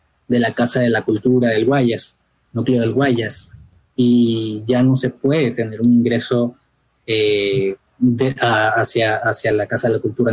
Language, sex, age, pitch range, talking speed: Spanish, male, 20-39, 115-130 Hz, 170 wpm